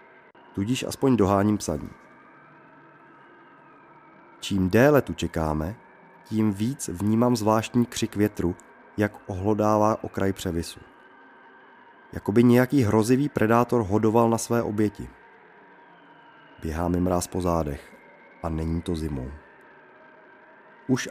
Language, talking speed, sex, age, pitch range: Czech, 100 wpm, male, 30-49, 90-120 Hz